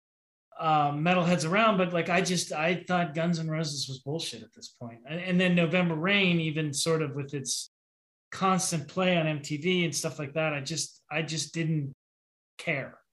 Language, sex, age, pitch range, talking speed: English, male, 20-39, 140-175 Hz, 185 wpm